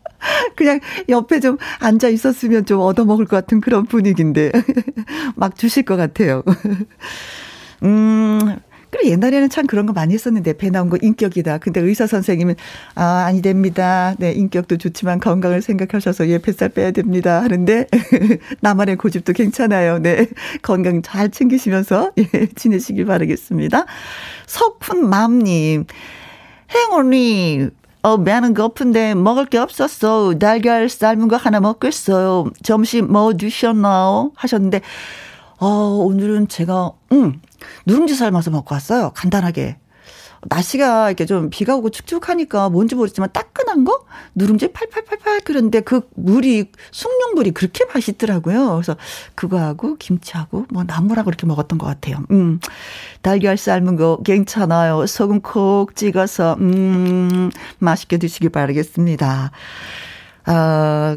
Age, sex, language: 40-59, female, Korean